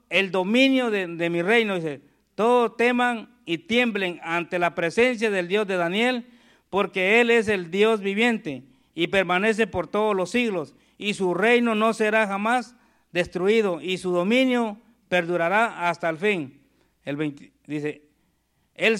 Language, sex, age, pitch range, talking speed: Spanish, male, 50-69, 175-230 Hz, 150 wpm